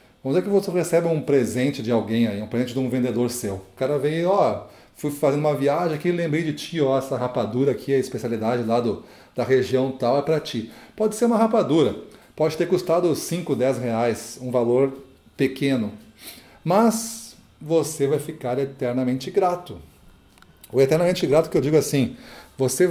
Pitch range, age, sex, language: 125-150 Hz, 40-59, male, Portuguese